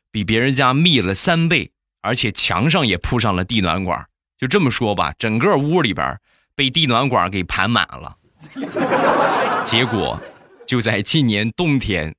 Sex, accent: male, native